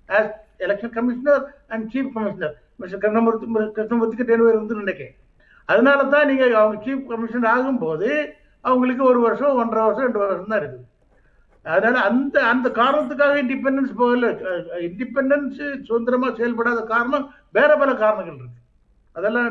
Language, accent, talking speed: Tamil, native, 145 wpm